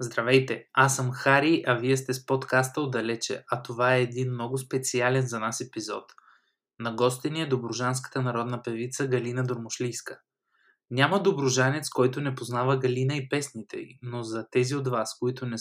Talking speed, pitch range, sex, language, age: 170 wpm, 120-135 Hz, male, Bulgarian, 20-39